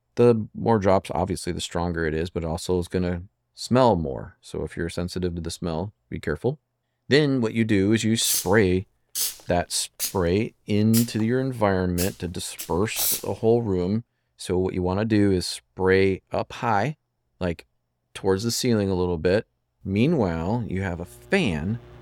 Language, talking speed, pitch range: English, 165 wpm, 85-110 Hz